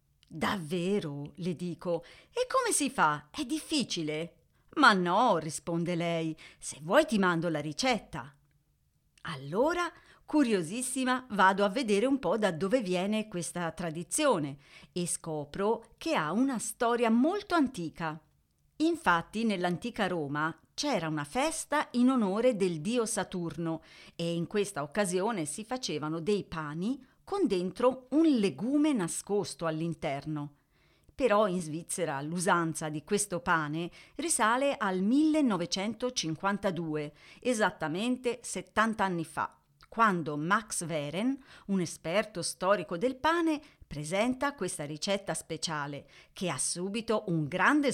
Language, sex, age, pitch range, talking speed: Italian, female, 40-59, 165-240 Hz, 120 wpm